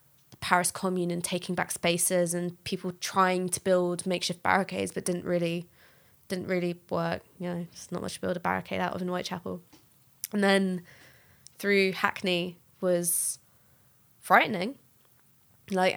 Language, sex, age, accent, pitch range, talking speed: English, female, 20-39, British, 175-190 Hz, 145 wpm